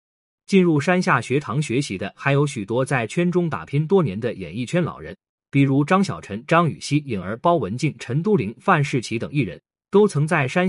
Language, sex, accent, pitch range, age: Chinese, male, native, 125-170 Hz, 30-49